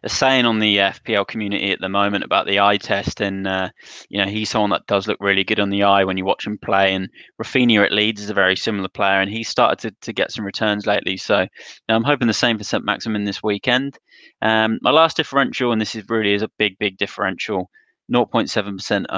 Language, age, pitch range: English, 20-39, 100-115 Hz